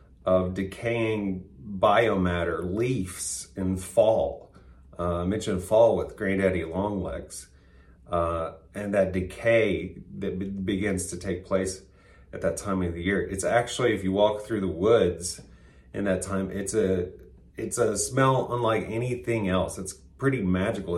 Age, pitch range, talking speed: 30-49, 85-105 Hz, 145 wpm